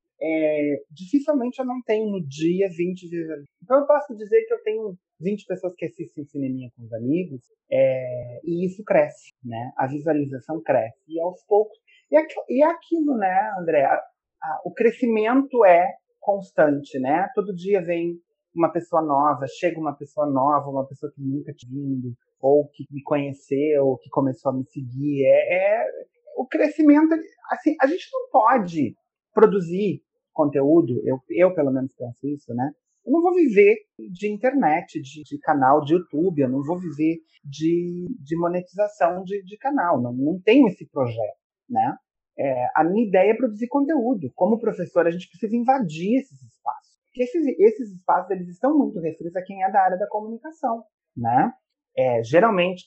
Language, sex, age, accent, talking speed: Portuguese, male, 30-49, Brazilian, 175 wpm